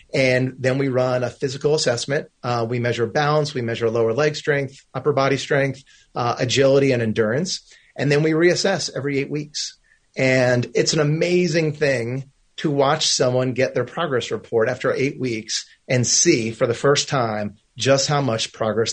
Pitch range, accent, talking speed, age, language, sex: 115-145 Hz, American, 175 wpm, 30-49, English, male